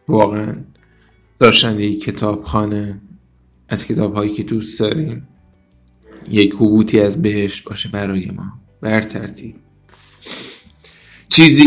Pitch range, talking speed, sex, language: 105-115 Hz, 100 wpm, male, Persian